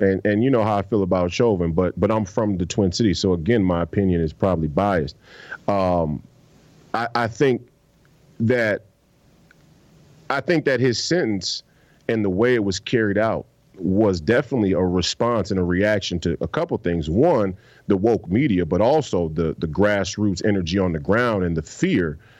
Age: 40-59